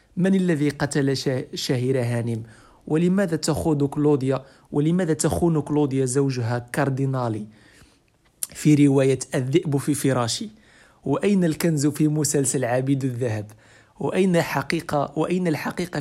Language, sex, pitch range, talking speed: Arabic, male, 130-165 Hz, 105 wpm